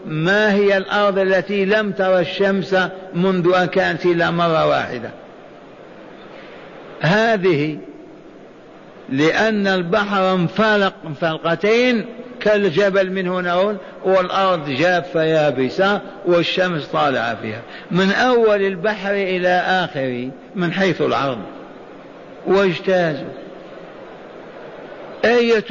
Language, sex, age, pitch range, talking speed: Arabic, male, 60-79, 180-200 Hz, 80 wpm